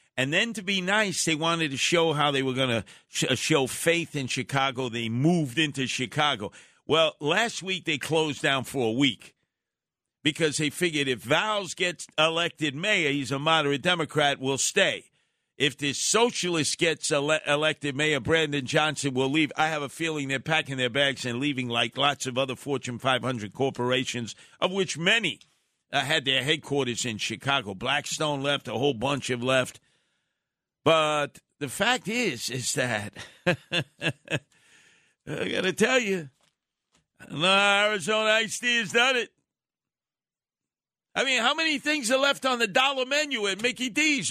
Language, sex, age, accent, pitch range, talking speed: English, male, 50-69, American, 140-215 Hz, 165 wpm